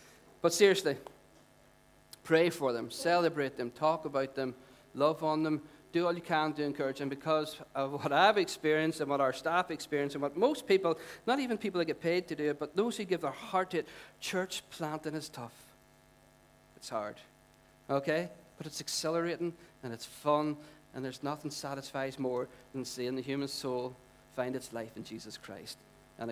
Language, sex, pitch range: English, male, 140-175 Hz